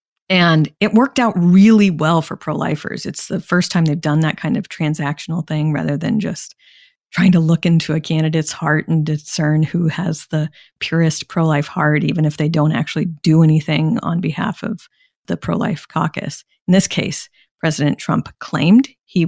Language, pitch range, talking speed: English, 155-190 Hz, 175 wpm